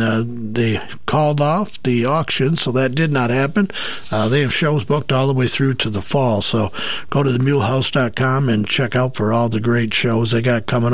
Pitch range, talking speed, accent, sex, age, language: 125-185 Hz, 210 wpm, American, male, 60-79, English